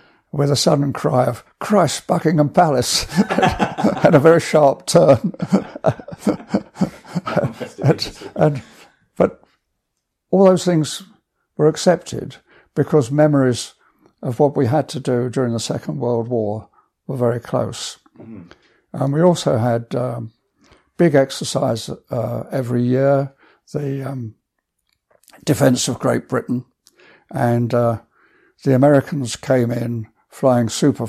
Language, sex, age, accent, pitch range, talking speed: English, male, 60-79, British, 115-145 Hz, 115 wpm